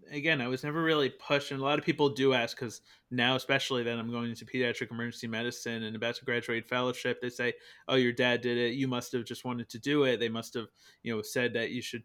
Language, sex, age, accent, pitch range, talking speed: English, male, 30-49, American, 120-135 Hz, 260 wpm